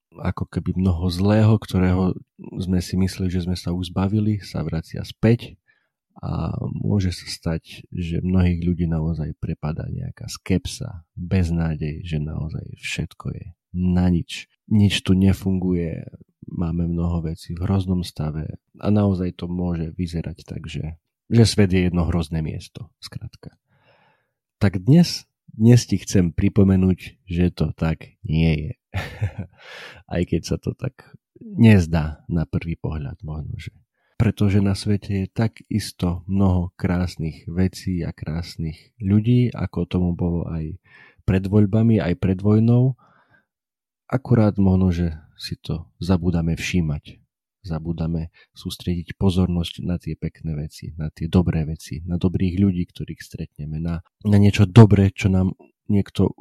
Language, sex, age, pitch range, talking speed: Slovak, male, 40-59, 85-100 Hz, 135 wpm